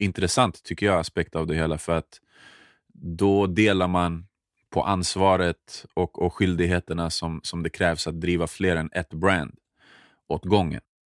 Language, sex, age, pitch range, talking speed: Swedish, male, 30-49, 80-95 Hz, 155 wpm